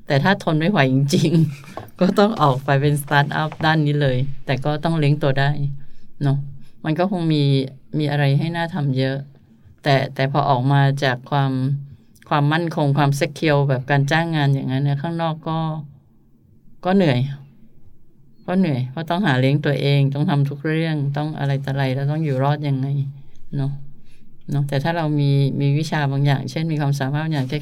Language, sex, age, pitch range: Thai, female, 20-39, 140-155 Hz